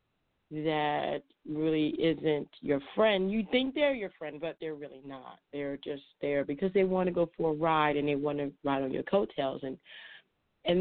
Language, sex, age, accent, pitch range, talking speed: English, female, 40-59, American, 155-210 Hz, 195 wpm